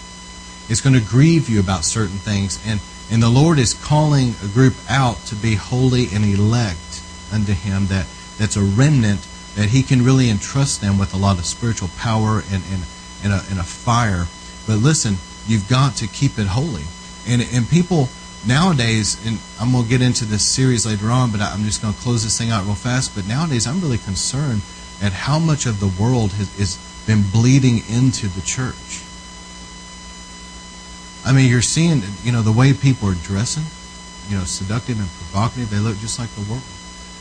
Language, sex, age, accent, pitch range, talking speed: English, male, 40-59, American, 90-125 Hz, 195 wpm